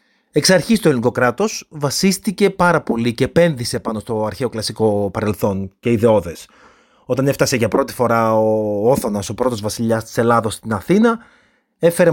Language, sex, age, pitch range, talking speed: Greek, male, 30-49, 115-170 Hz, 160 wpm